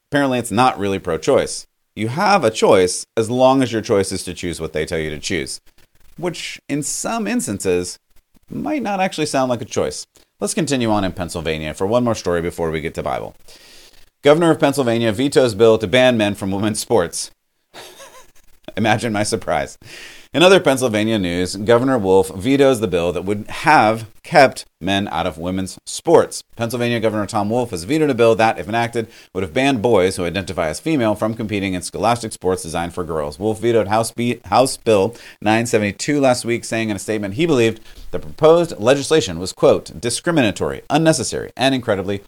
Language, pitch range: English, 95-125 Hz